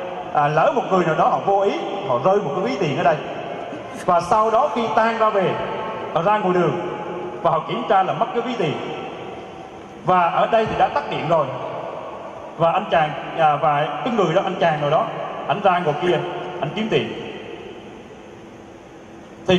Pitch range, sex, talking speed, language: 170-230 Hz, male, 200 wpm, Vietnamese